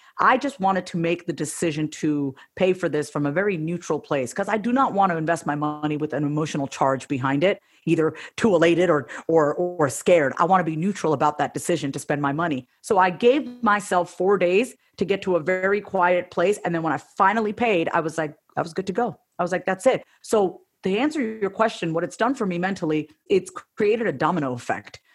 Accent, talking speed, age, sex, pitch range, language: American, 235 wpm, 40-59, female, 170-245 Hz, English